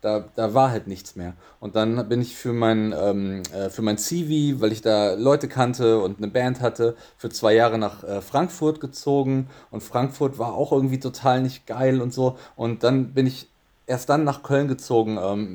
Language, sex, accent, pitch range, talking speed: German, male, German, 115-140 Hz, 195 wpm